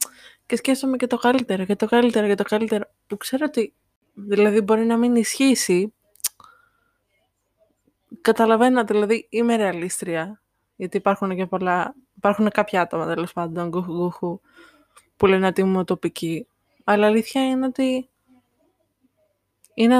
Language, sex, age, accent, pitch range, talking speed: Greek, female, 20-39, native, 190-235 Hz, 125 wpm